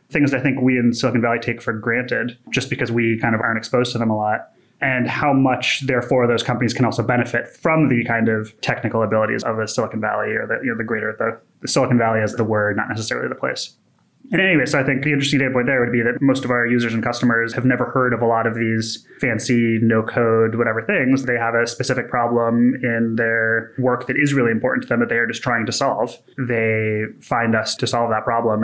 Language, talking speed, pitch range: English, 240 wpm, 115-130 Hz